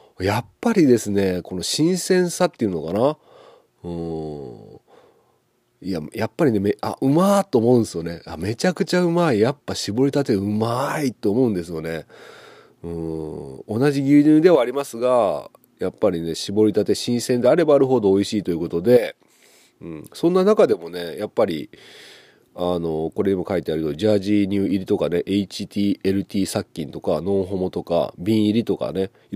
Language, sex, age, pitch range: Japanese, male, 40-59, 95-130 Hz